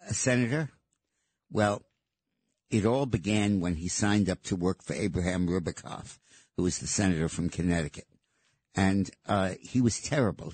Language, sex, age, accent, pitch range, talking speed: English, male, 60-79, American, 85-110 Hz, 150 wpm